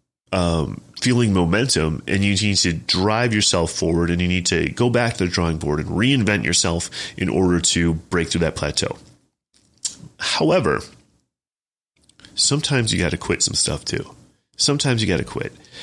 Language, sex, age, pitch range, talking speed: English, male, 30-49, 85-115 Hz, 165 wpm